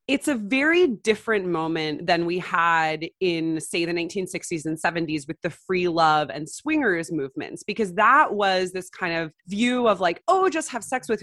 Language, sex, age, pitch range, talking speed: English, female, 20-39, 160-220 Hz, 185 wpm